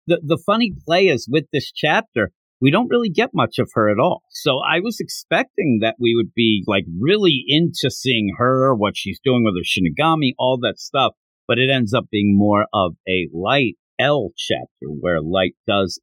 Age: 50-69